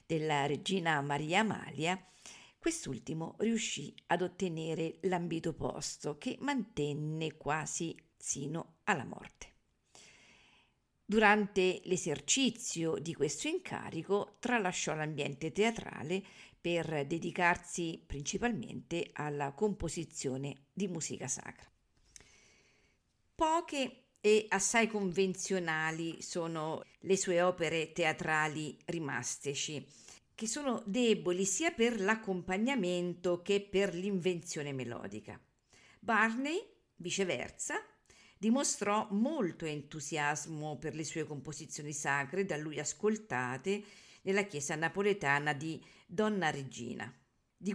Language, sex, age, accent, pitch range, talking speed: Italian, female, 50-69, native, 150-205 Hz, 90 wpm